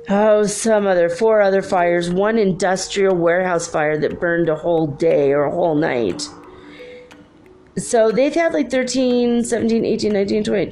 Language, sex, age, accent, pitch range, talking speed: English, female, 40-59, American, 160-205 Hz, 150 wpm